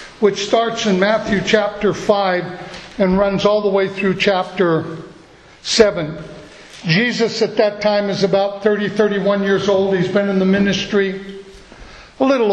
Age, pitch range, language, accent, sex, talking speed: 60-79, 185-220 Hz, English, American, male, 150 wpm